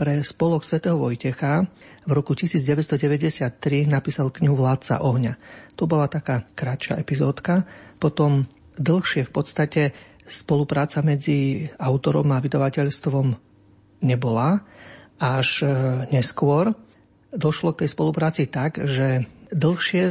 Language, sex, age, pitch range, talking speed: Slovak, male, 40-59, 130-155 Hz, 100 wpm